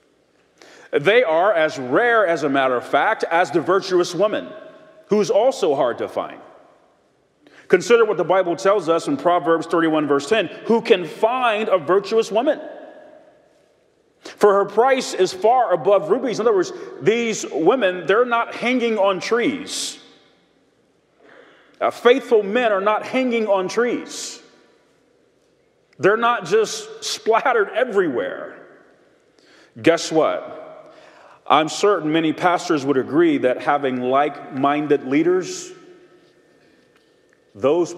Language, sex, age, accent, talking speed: English, male, 40-59, American, 125 wpm